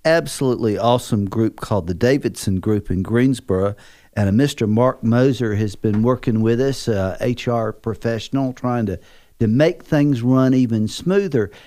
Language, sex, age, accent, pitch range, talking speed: English, male, 50-69, American, 110-135 Hz, 155 wpm